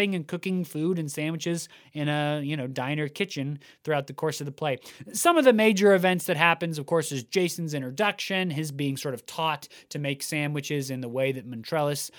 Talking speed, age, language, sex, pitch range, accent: 205 wpm, 20-39, English, male, 135-165 Hz, American